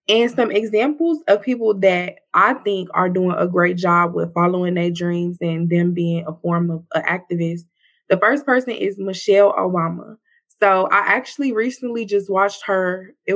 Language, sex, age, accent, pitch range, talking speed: English, female, 20-39, American, 180-210 Hz, 175 wpm